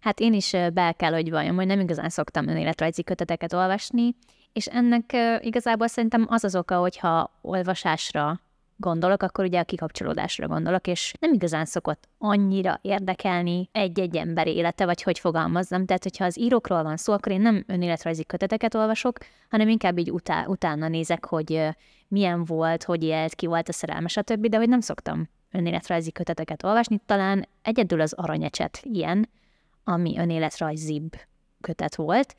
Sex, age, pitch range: female, 20-39, 165-205 Hz